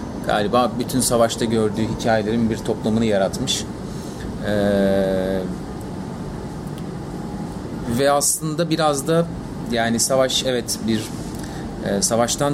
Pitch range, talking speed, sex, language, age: 100-125 Hz, 90 wpm, male, Turkish, 30-49